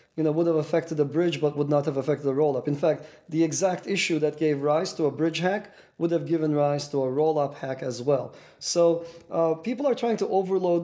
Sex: male